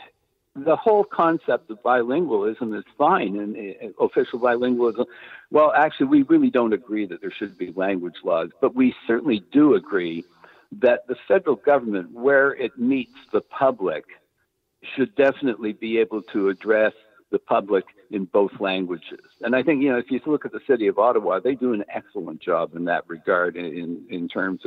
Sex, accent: male, American